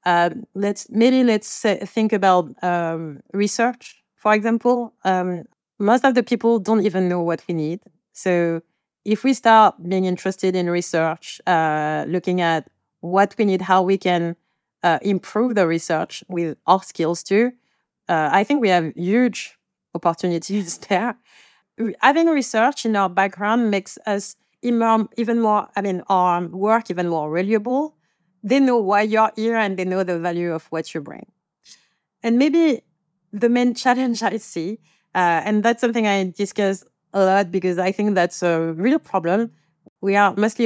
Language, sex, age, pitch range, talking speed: English, female, 30-49, 180-230 Hz, 160 wpm